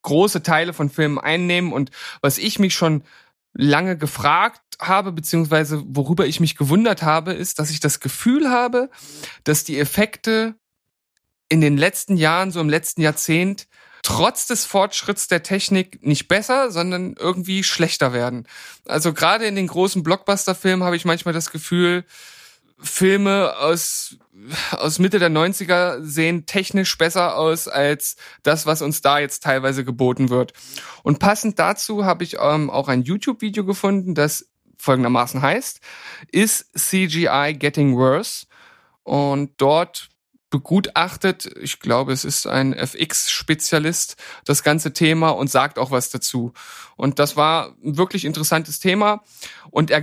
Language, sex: German, male